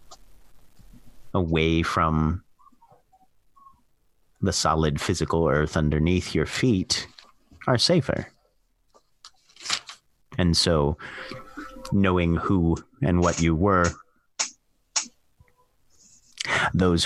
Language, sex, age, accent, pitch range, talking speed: English, male, 30-49, American, 80-95 Hz, 70 wpm